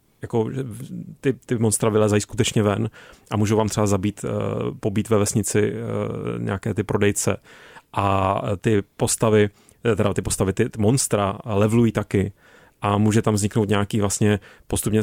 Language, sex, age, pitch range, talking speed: Czech, male, 30-49, 100-115 Hz, 135 wpm